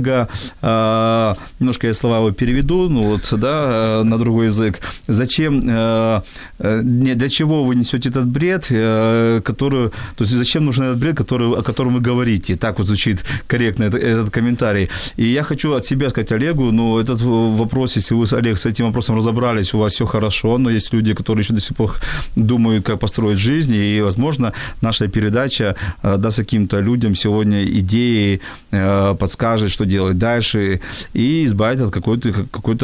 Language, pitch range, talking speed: Ukrainian, 105-125 Hz, 165 wpm